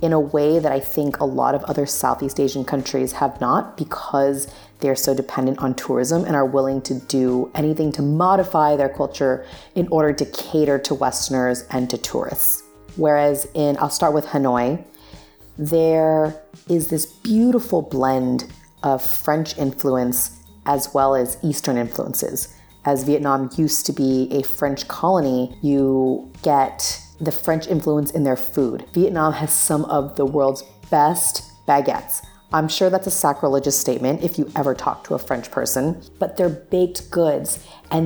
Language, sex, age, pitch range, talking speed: English, female, 30-49, 135-170 Hz, 160 wpm